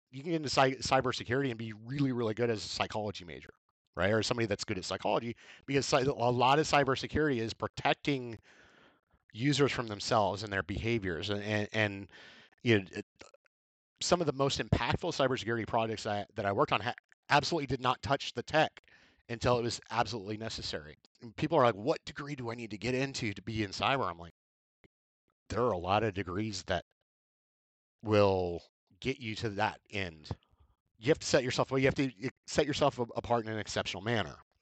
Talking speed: 190 wpm